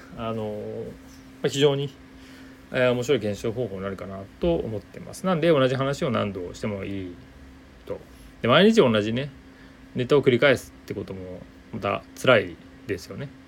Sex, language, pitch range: male, Japanese, 95-140 Hz